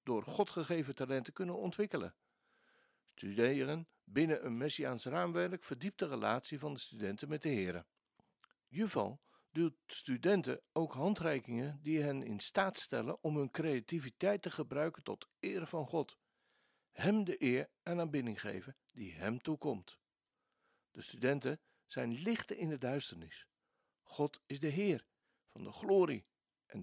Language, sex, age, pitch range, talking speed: Dutch, male, 60-79, 125-175 Hz, 140 wpm